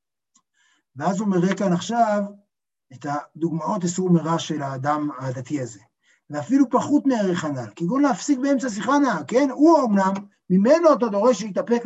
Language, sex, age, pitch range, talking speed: Hebrew, male, 60-79, 170-255 Hz, 145 wpm